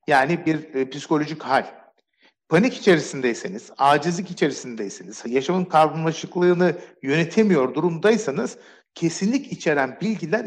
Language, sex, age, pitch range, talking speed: Turkish, male, 50-69, 155-205 Hz, 85 wpm